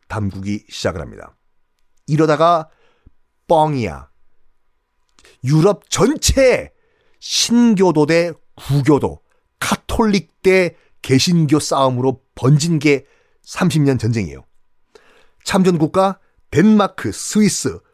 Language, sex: Korean, male